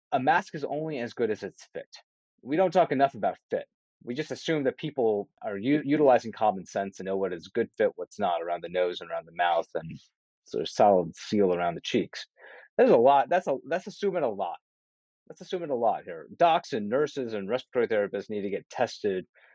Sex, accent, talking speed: male, American, 225 wpm